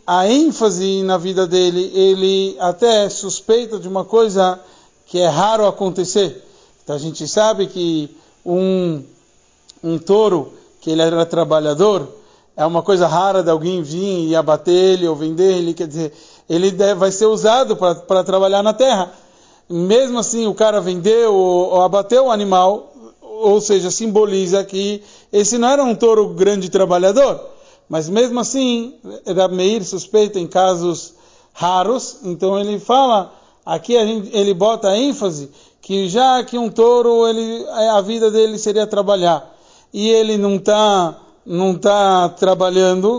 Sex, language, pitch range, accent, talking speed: male, Portuguese, 180-220 Hz, Brazilian, 150 wpm